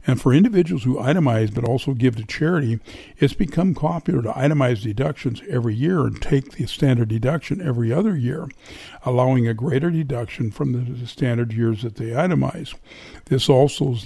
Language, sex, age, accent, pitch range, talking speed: English, male, 60-79, American, 120-145 Hz, 170 wpm